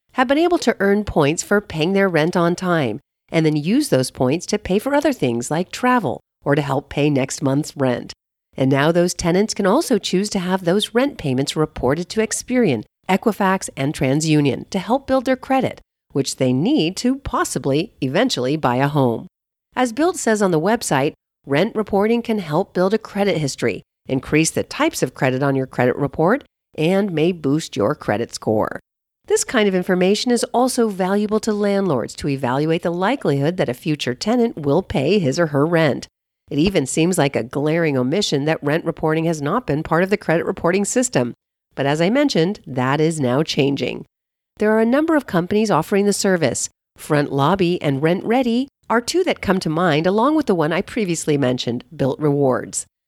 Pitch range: 145-210 Hz